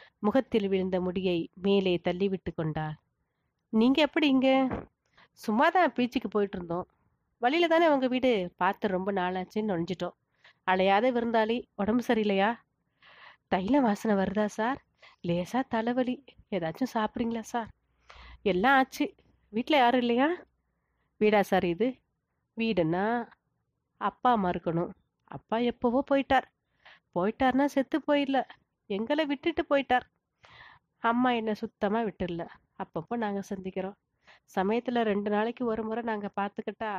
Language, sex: Tamil, female